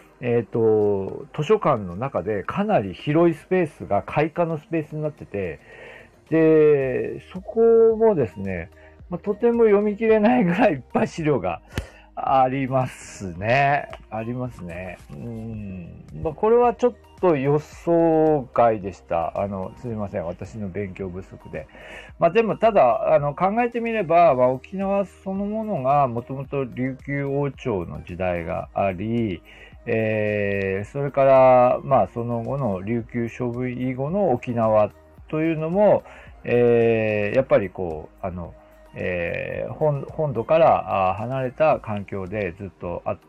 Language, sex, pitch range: Japanese, male, 105-170 Hz